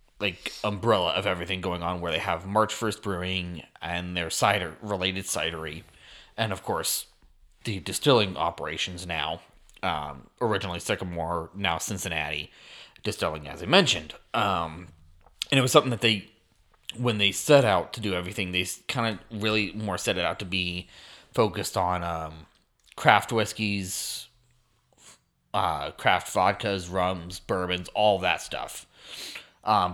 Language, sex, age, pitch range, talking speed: English, male, 30-49, 85-110 Hz, 140 wpm